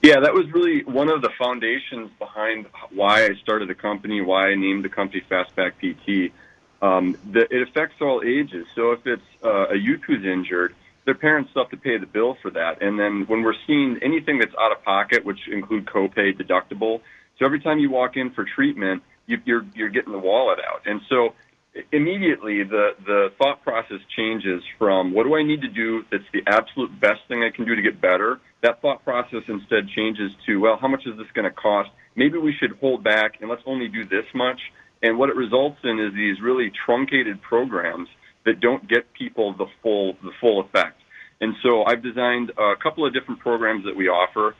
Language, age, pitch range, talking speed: English, 30-49, 100-130 Hz, 210 wpm